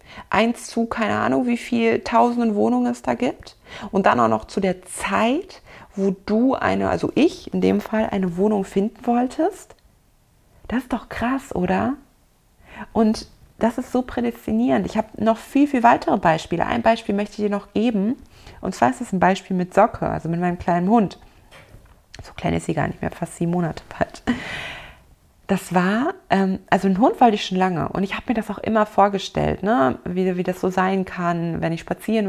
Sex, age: female, 30-49